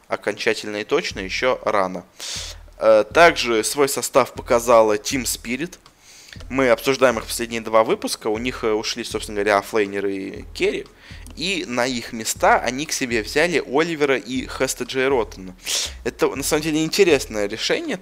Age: 20-39